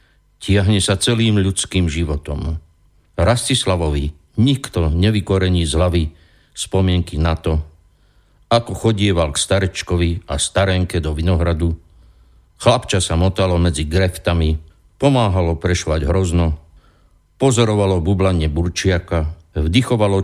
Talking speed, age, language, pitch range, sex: 100 wpm, 60-79, Slovak, 85-100 Hz, male